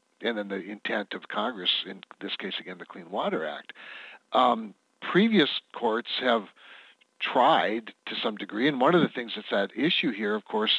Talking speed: 185 wpm